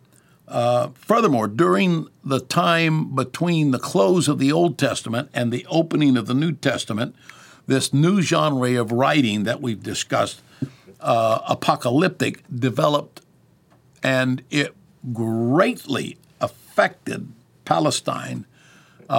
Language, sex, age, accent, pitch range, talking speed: English, male, 60-79, American, 120-140 Hz, 110 wpm